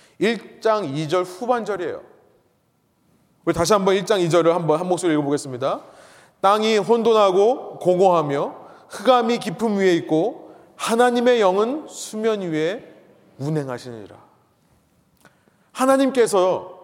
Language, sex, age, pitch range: Korean, male, 30-49, 170-235 Hz